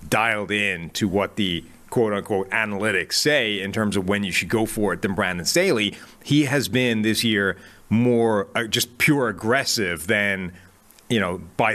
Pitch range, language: 100-120 Hz, English